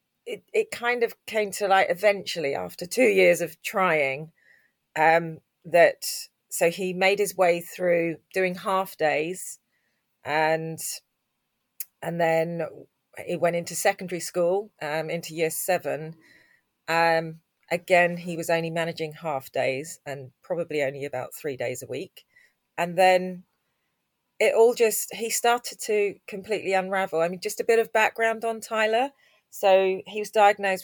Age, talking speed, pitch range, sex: 30-49, 145 wpm, 160-205 Hz, female